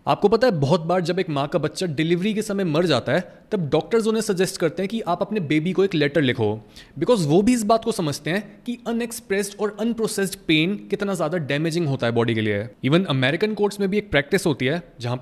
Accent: native